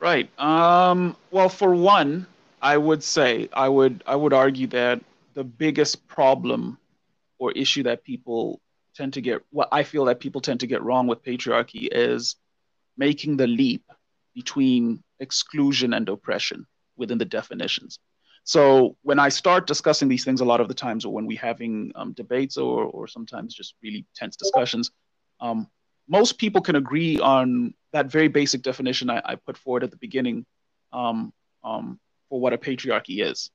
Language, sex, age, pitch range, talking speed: English, male, 30-49, 125-185 Hz, 170 wpm